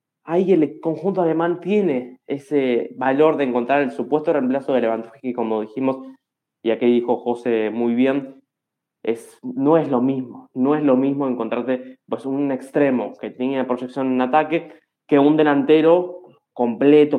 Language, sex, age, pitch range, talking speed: Spanish, male, 20-39, 120-150 Hz, 155 wpm